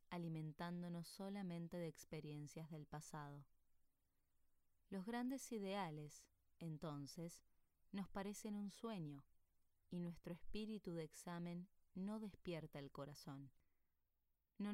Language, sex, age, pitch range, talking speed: Spanish, female, 20-39, 145-190 Hz, 100 wpm